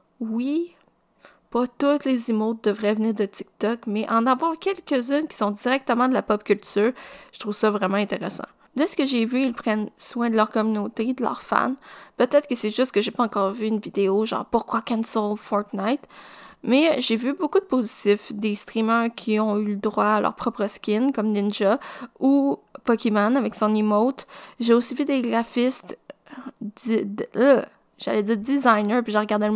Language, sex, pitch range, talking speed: French, female, 210-260 Hz, 195 wpm